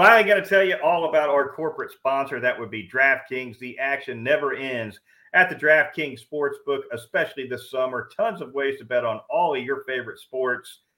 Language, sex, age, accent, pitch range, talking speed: English, male, 40-59, American, 125-160 Hz, 200 wpm